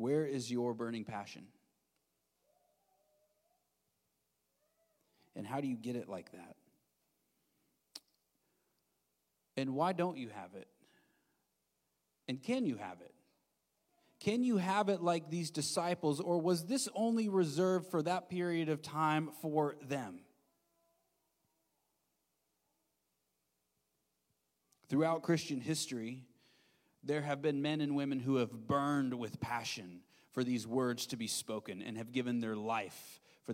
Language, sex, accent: English, male, American